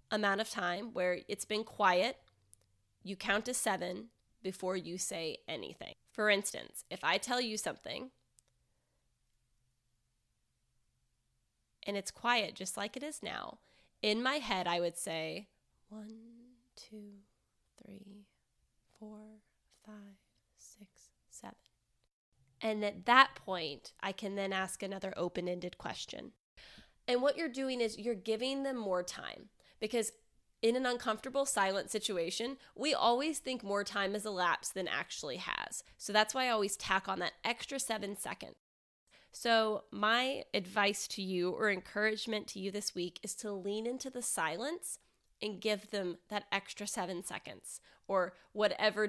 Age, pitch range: 20-39, 185-225 Hz